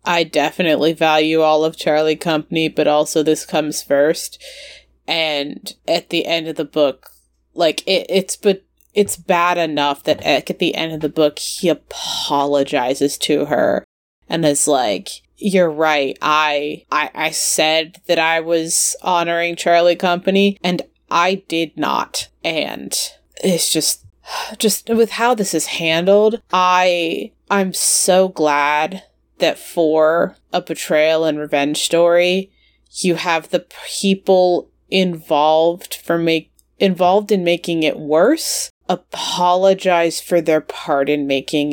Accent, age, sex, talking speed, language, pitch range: American, 20-39, female, 135 wpm, English, 155-185 Hz